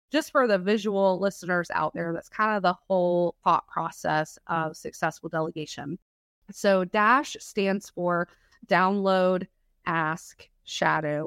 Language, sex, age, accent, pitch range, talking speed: English, female, 30-49, American, 175-220 Hz, 130 wpm